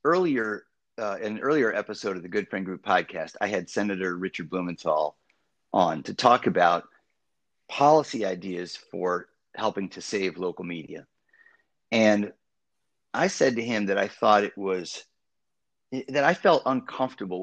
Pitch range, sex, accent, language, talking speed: 90-115 Hz, male, American, English, 145 wpm